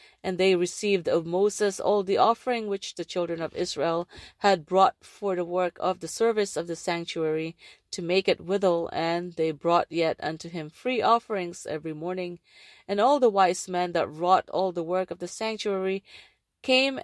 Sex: female